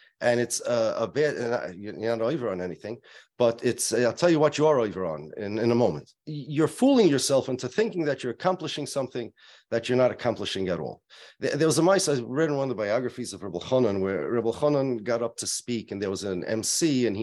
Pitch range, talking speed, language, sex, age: 115-150 Hz, 235 wpm, English, male, 40-59